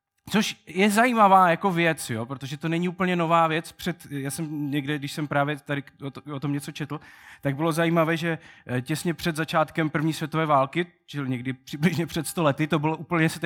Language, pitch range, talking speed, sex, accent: Czech, 135-175 Hz, 190 wpm, male, native